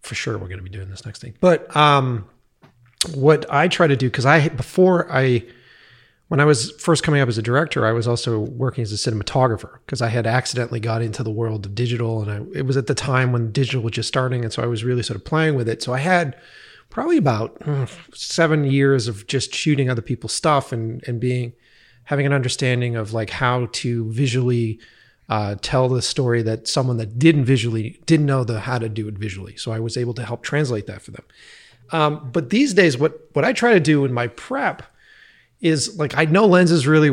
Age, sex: 30-49, male